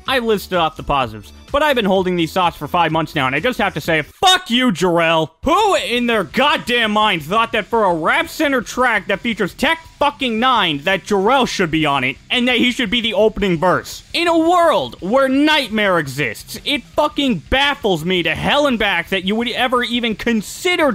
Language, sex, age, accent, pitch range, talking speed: English, male, 30-49, American, 185-260 Hz, 215 wpm